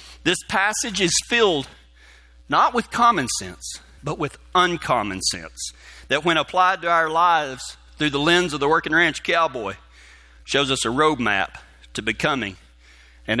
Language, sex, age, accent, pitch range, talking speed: English, male, 40-59, American, 110-180 Hz, 150 wpm